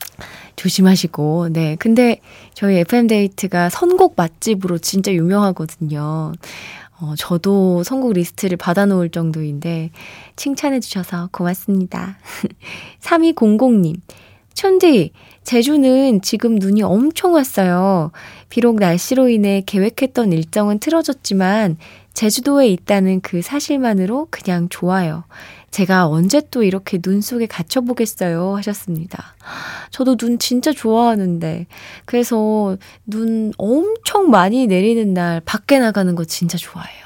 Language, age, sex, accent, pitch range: Korean, 20-39, female, native, 170-230 Hz